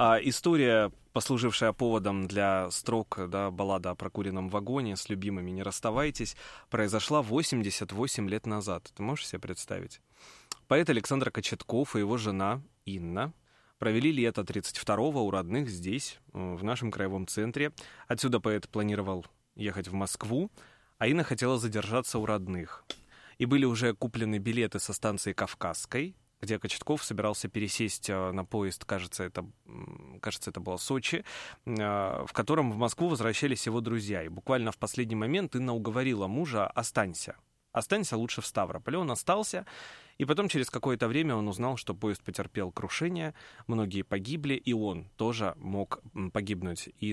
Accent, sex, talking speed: native, male, 145 wpm